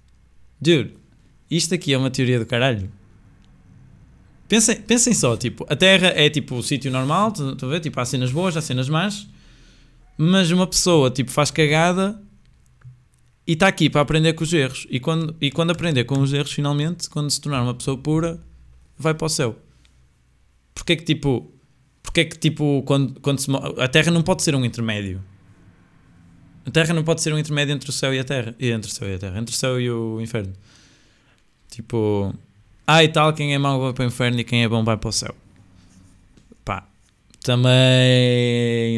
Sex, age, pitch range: male, 20-39, 110-150 Hz